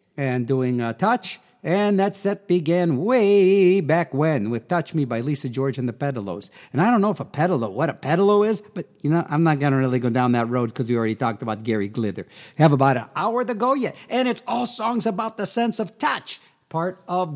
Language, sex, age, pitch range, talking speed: English, male, 50-69, 135-200 Hz, 230 wpm